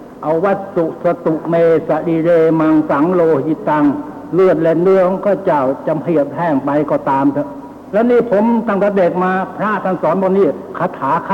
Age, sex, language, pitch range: 60-79, male, Thai, 160-220 Hz